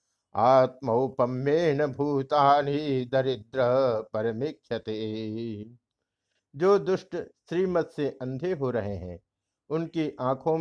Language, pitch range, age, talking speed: Hindi, 125-165 Hz, 60-79, 80 wpm